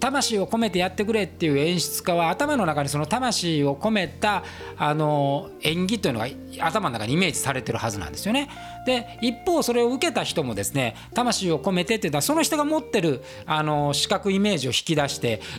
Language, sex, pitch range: Japanese, male, 140-230 Hz